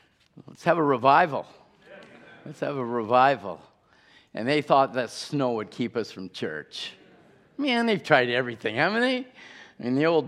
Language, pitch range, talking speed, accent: English, 110-150 Hz, 165 wpm, American